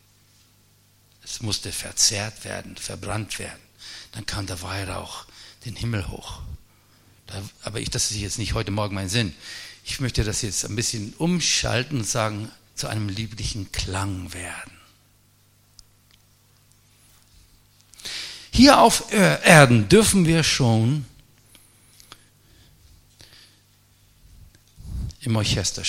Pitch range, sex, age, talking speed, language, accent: 100-115 Hz, male, 60-79, 100 wpm, German, German